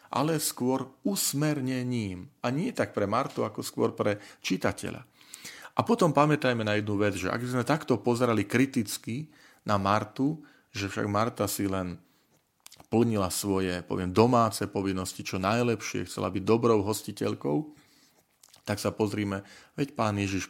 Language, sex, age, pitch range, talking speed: Slovak, male, 40-59, 95-130 Hz, 145 wpm